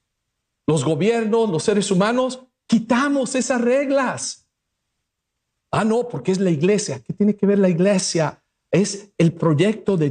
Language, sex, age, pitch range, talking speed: English, male, 50-69, 145-215 Hz, 140 wpm